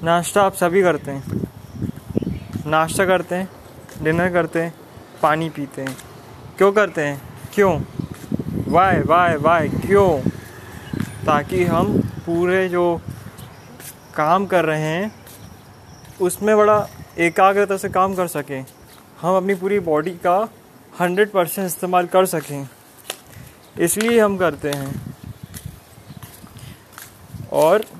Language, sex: Hindi, male